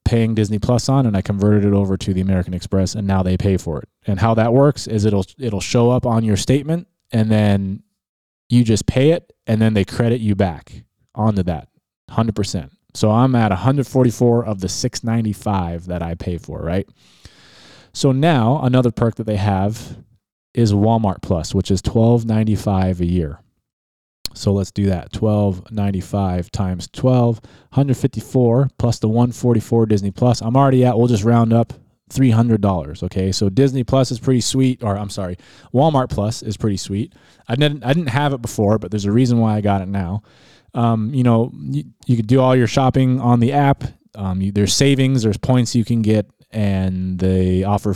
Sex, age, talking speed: male, 20-39, 190 wpm